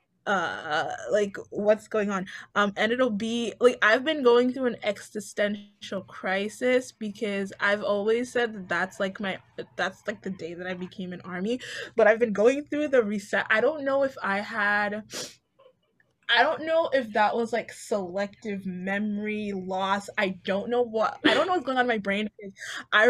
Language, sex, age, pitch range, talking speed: English, female, 20-39, 200-240 Hz, 180 wpm